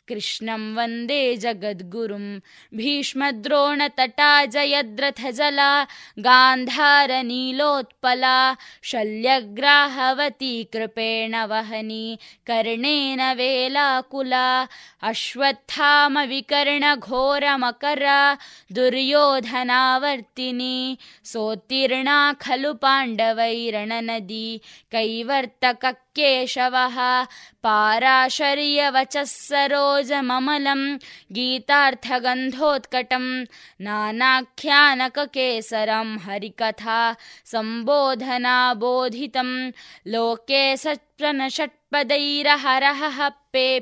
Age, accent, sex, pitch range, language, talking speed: 20-39, native, female, 230-280 Hz, Kannada, 40 wpm